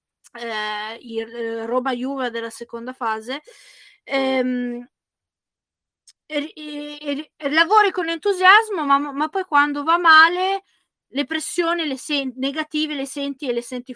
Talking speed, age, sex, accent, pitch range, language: 130 wpm, 20-39, female, native, 240-300 Hz, Italian